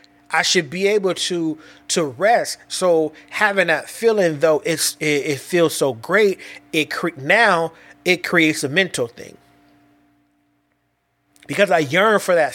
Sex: male